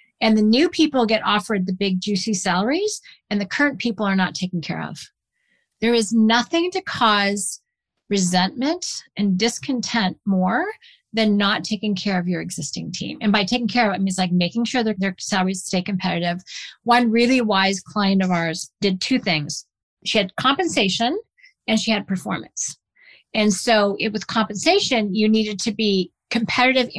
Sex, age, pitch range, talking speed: female, 40-59, 195-250 Hz, 170 wpm